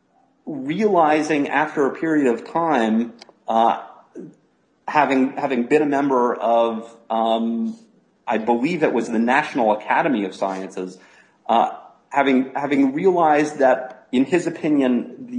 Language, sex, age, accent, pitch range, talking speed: English, male, 40-59, American, 115-165 Hz, 125 wpm